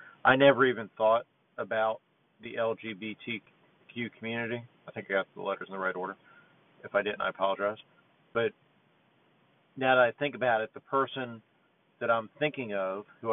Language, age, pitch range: English, 40-59, 105-120 Hz